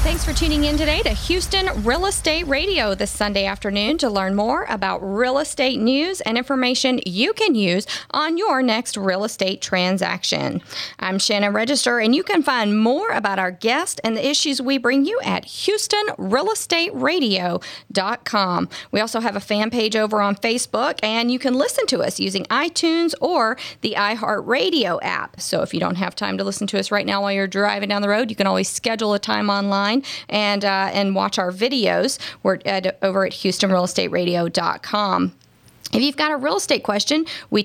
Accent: American